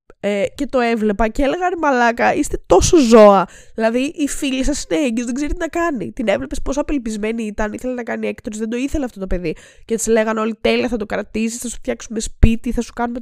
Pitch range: 220-300 Hz